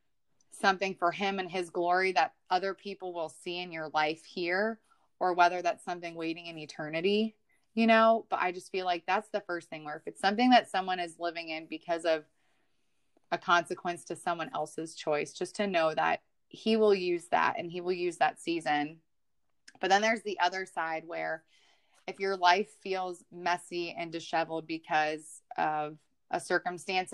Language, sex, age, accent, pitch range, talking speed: English, female, 20-39, American, 160-195 Hz, 180 wpm